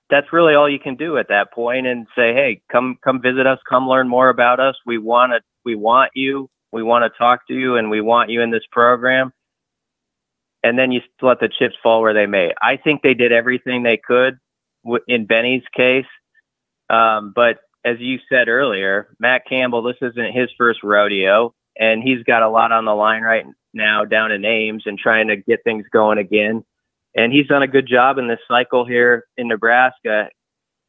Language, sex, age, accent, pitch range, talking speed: English, male, 30-49, American, 110-125 Hz, 205 wpm